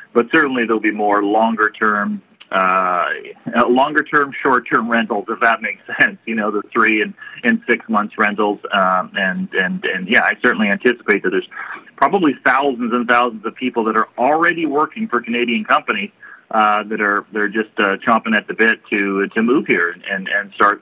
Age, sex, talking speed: 40-59, male, 180 wpm